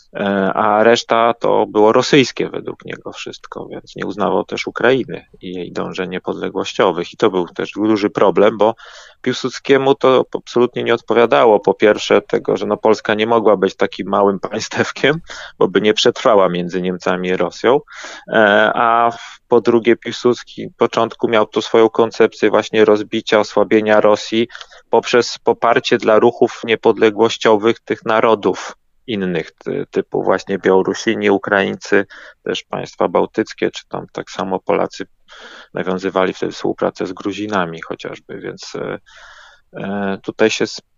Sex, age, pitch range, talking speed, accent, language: male, 30-49, 100-125 Hz, 135 wpm, native, Polish